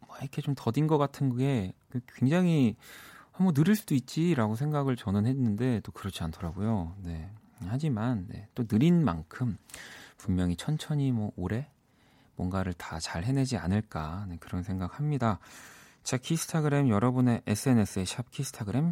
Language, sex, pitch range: Korean, male, 90-140 Hz